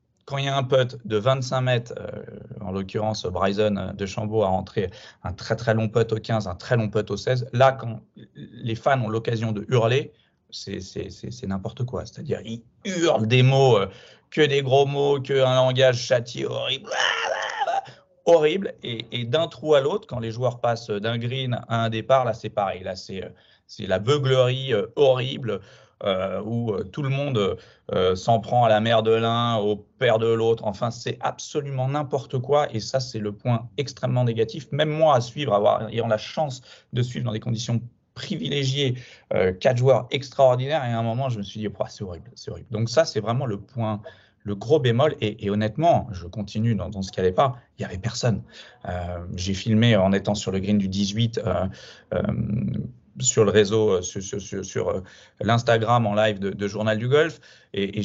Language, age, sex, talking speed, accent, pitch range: French, 40-59, male, 200 wpm, French, 105-130 Hz